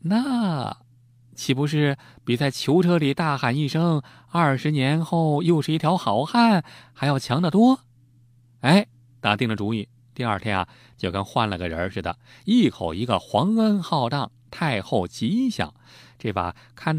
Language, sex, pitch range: Chinese, male, 115-160 Hz